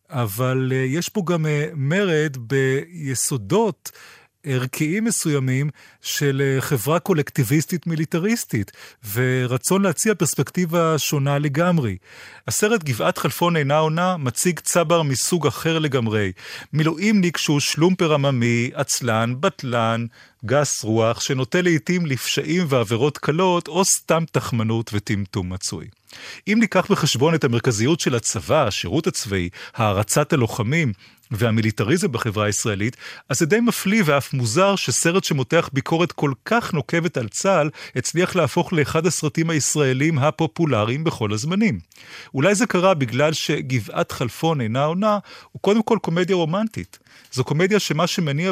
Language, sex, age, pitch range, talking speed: Hebrew, male, 30-49, 125-175 Hz, 120 wpm